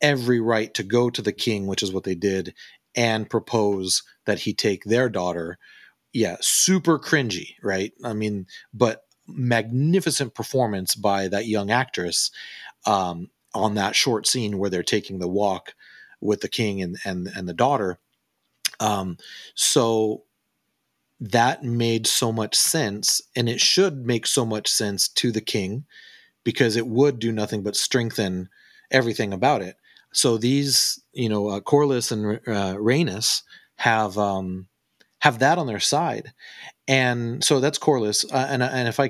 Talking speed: 155 wpm